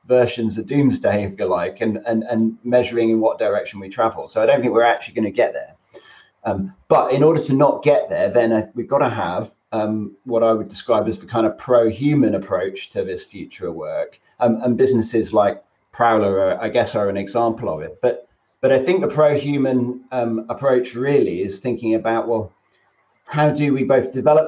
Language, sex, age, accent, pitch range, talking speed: English, male, 30-49, British, 110-130 Hz, 200 wpm